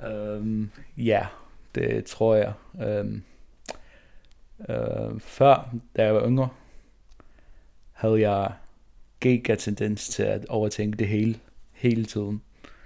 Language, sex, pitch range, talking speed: Danish, male, 105-115 Hz, 105 wpm